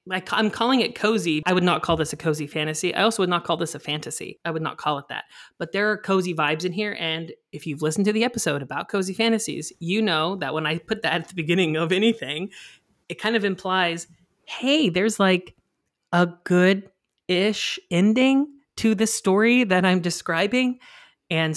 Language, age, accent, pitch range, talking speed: English, 30-49, American, 160-210 Hz, 205 wpm